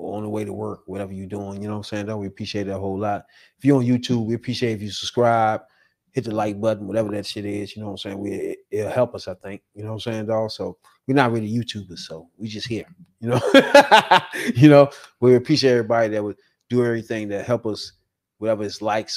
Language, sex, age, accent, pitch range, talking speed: English, male, 20-39, American, 105-125 Hz, 245 wpm